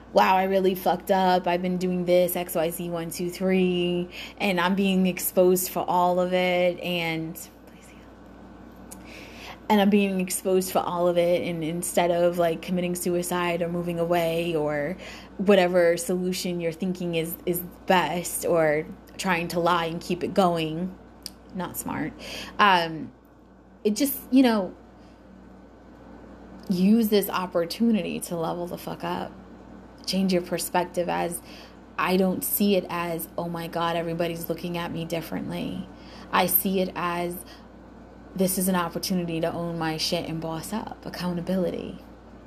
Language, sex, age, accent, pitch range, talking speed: English, female, 20-39, American, 170-185 Hz, 150 wpm